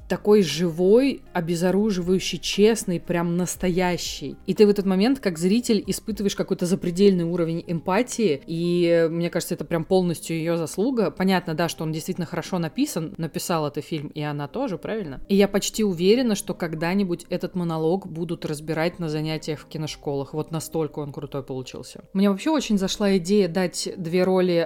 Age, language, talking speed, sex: 20-39, Russian, 165 wpm, female